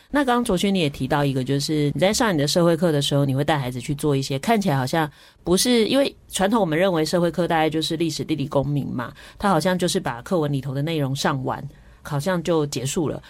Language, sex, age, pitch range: Chinese, female, 30-49, 145-185 Hz